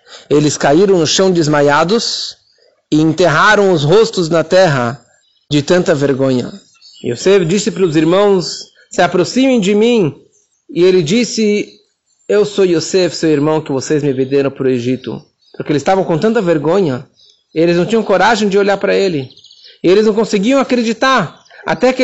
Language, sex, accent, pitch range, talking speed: Portuguese, male, Brazilian, 175-230 Hz, 160 wpm